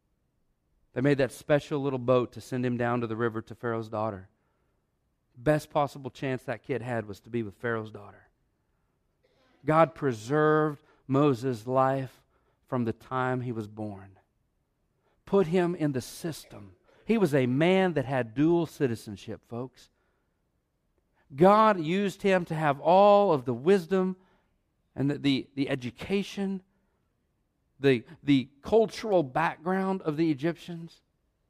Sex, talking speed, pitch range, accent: male, 135 wpm, 125-190 Hz, American